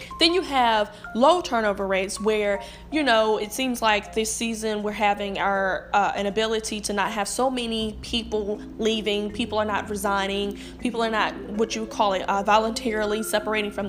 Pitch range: 205-230 Hz